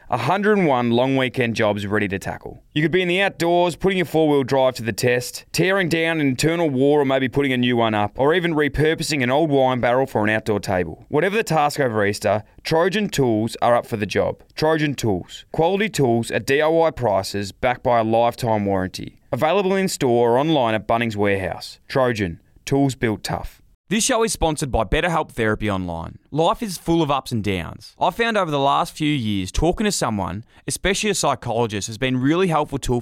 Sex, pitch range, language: male, 105-155 Hz, English